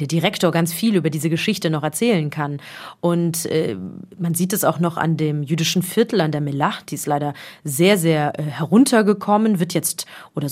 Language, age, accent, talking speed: German, 30-49, German, 195 wpm